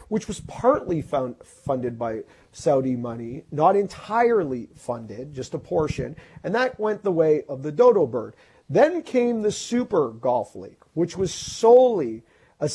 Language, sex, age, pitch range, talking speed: English, male, 40-59, 145-205 Hz, 150 wpm